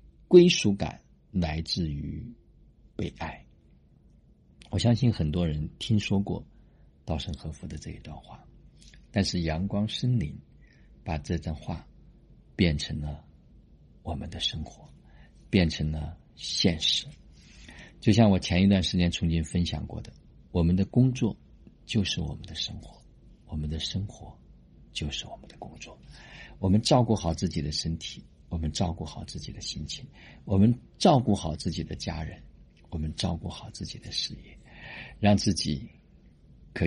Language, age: Chinese, 50-69